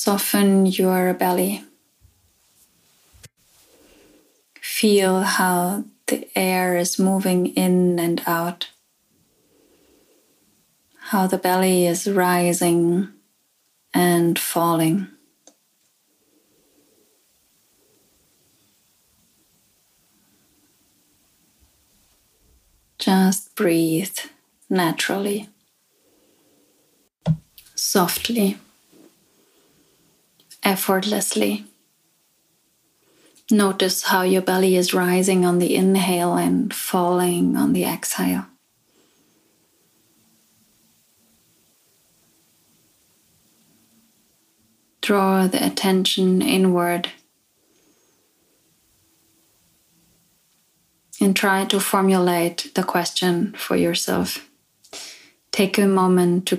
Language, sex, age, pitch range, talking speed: English, female, 30-49, 175-195 Hz, 55 wpm